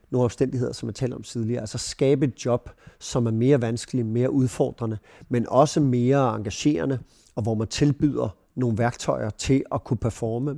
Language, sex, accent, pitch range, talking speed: Danish, male, native, 110-130 Hz, 175 wpm